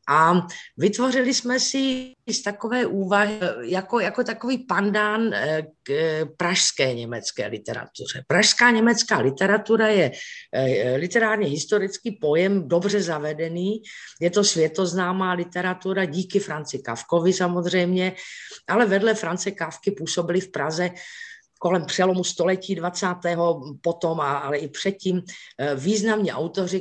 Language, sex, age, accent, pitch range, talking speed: Czech, female, 50-69, native, 150-200 Hz, 110 wpm